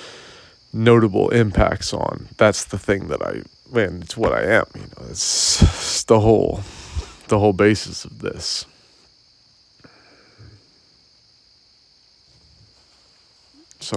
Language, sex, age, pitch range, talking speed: English, male, 30-49, 95-120 Hz, 105 wpm